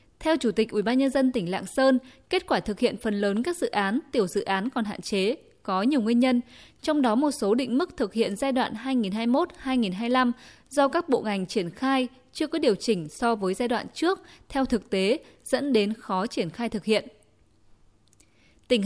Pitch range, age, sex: 200-265 Hz, 10-29, female